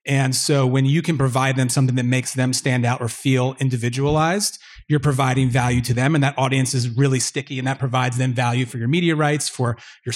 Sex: male